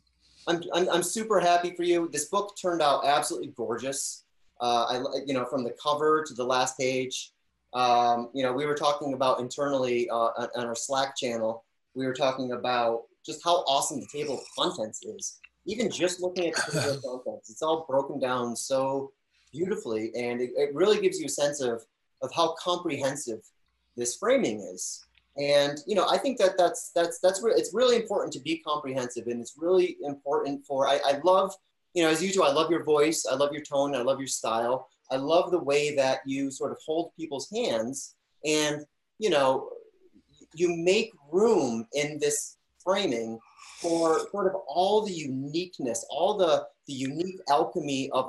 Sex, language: male, English